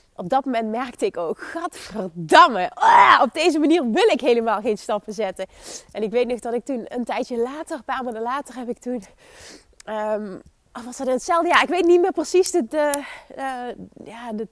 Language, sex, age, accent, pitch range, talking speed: Dutch, female, 20-39, Dutch, 225-275 Hz, 180 wpm